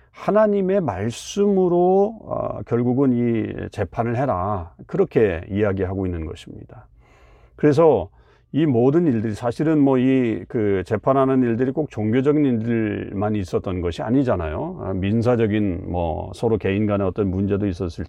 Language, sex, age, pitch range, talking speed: English, male, 40-59, 95-125 Hz, 105 wpm